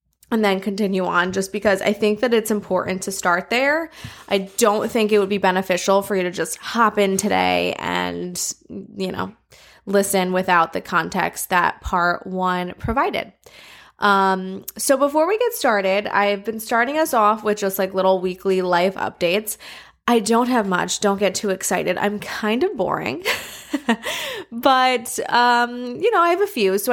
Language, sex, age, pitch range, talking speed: English, female, 20-39, 185-230 Hz, 175 wpm